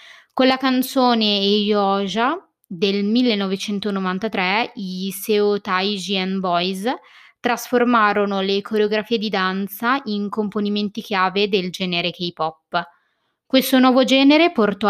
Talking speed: 100 wpm